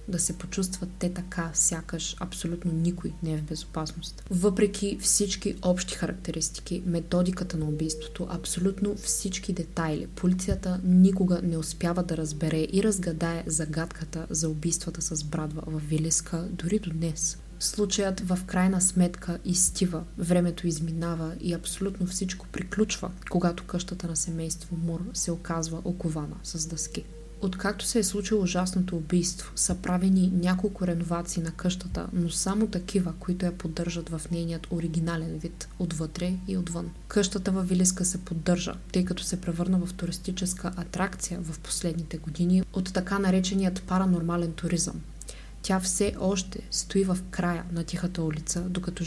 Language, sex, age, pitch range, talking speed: Bulgarian, female, 20-39, 165-185 Hz, 140 wpm